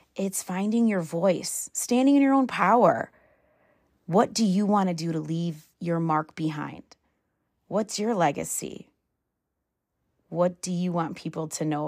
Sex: female